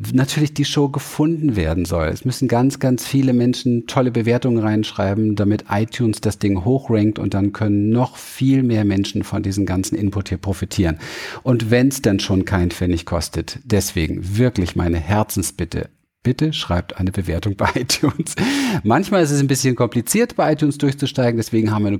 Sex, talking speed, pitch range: male, 175 wpm, 95-120 Hz